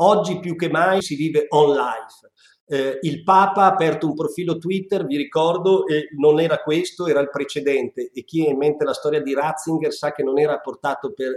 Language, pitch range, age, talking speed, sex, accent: Italian, 145-180 Hz, 50-69, 205 wpm, male, native